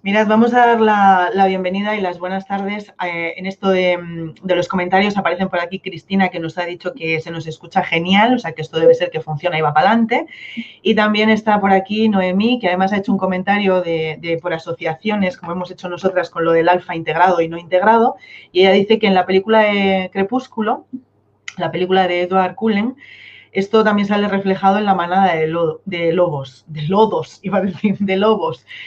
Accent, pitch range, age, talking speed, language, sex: Spanish, 165-200 Hz, 30-49, 215 wpm, Spanish, female